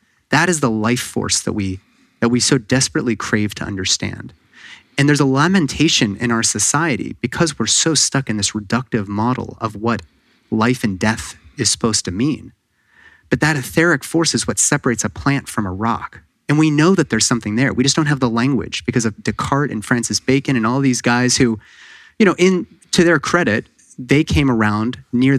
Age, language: 30-49, English